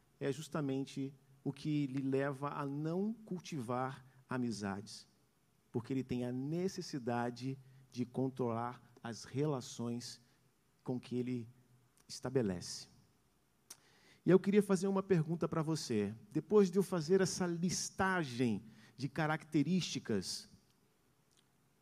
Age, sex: 50-69, male